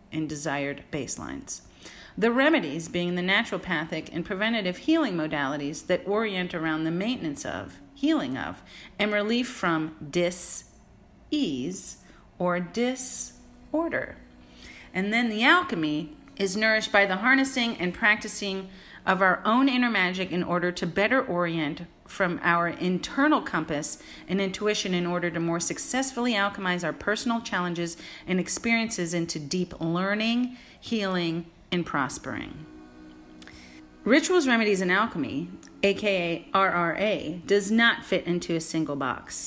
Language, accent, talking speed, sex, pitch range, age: English, American, 130 wpm, female, 170-220 Hz, 40-59